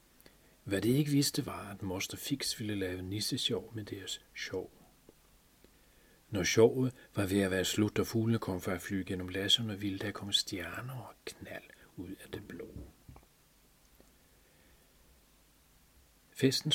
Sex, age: male, 40-59